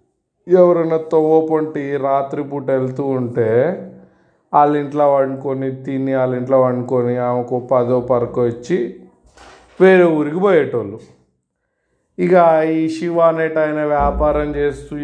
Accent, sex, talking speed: native, male, 100 wpm